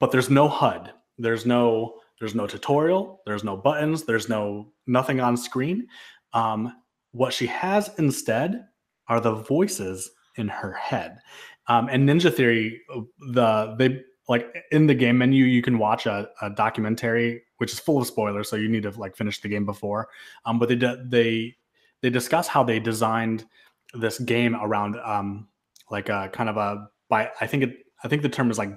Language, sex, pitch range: English, male, 110-130 Hz